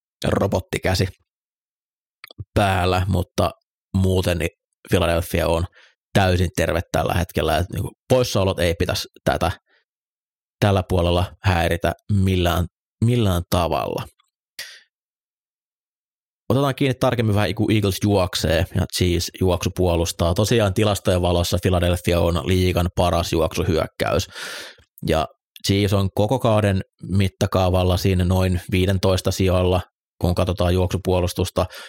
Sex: male